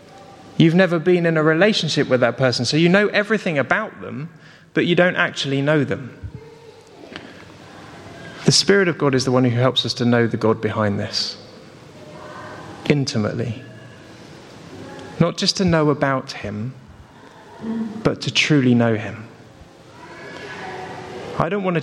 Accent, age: British, 30-49